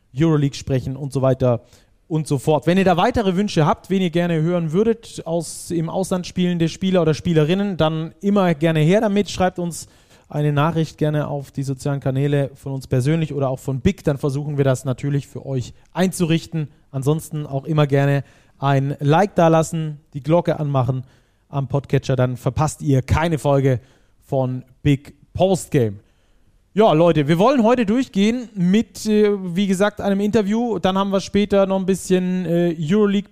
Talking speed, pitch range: 175 wpm, 140-180 Hz